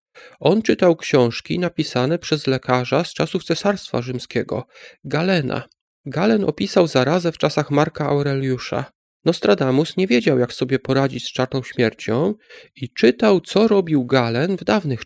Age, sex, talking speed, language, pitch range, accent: 40-59, male, 135 wpm, Polish, 130-175 Hz, native